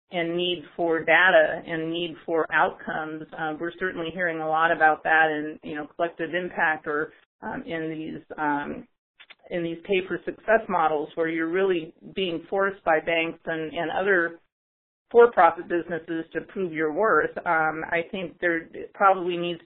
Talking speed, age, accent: 165 wpm, 40-59, American